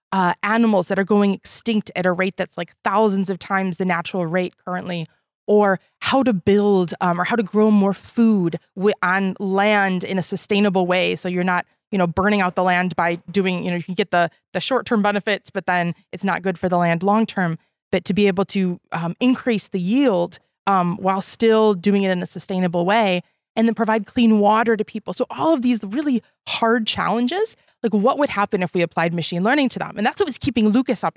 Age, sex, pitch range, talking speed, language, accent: 20-39, female, 180-220 Hz, 225 wpm, English, American